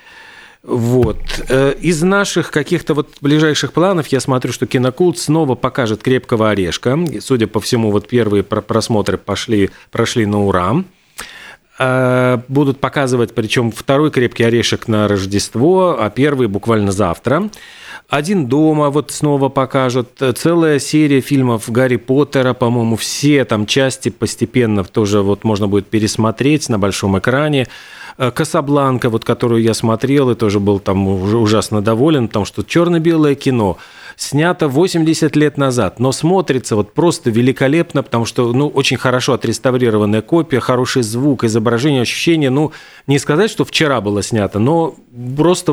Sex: male